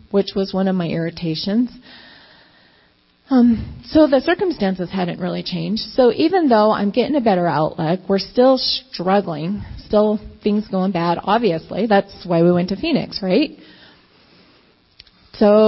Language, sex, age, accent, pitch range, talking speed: English, female, 30-49, American, 180-235 Hz, 140 wpm